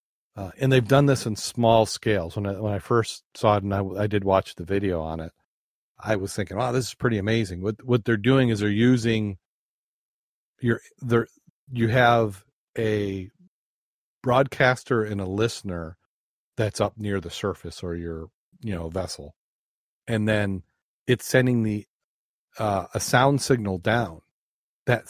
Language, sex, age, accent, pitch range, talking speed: English, male, 40-59, American, 95-120 Hz, 165 wpm